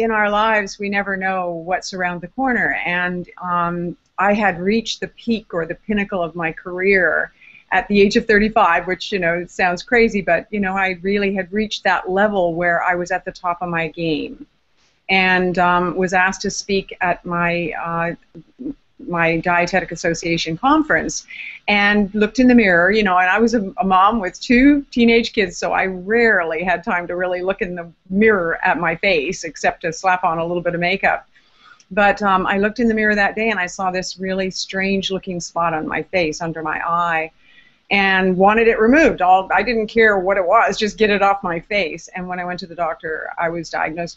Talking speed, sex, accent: 205 wpm, female, American